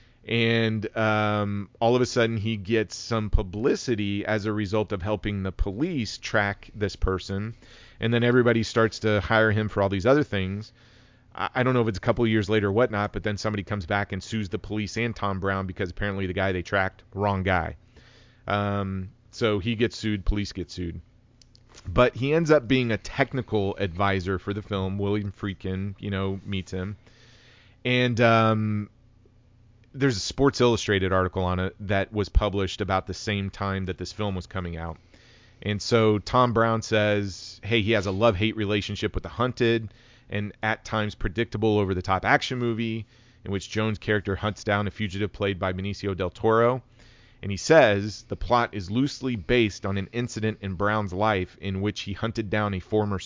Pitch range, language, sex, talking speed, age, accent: 100-115 Hz, English, male, 185 wpm, 30-49, American